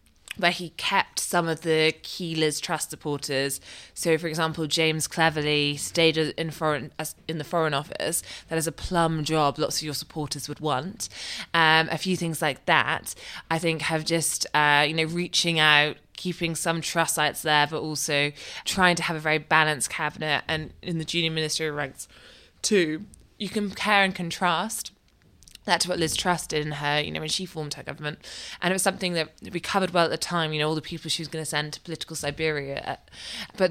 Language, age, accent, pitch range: English, 20-39, British, 150-175 Hz